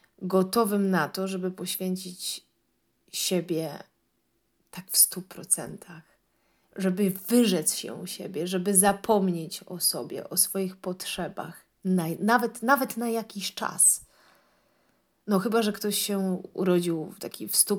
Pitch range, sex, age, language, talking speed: 175-200 Hz, female, 30-49, Polish, 120 wpm